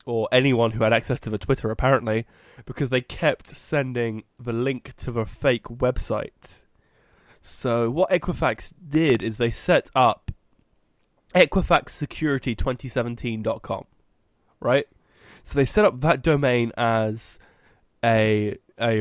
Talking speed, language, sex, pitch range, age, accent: 120 wpm, English, male, 115-140 Hz, 20-39, British